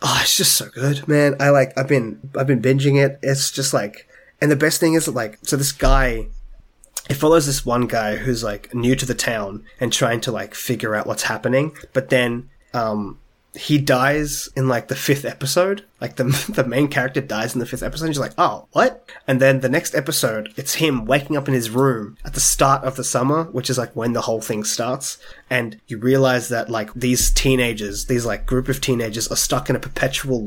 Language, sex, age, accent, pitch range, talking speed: English, male, 20-39, Australian, 115-140 Hz, 220 wpm